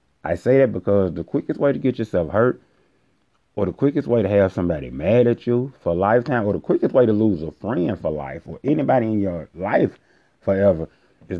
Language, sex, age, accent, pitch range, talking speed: English, male, 30-49, American, 80-100 Hz, 215 wpm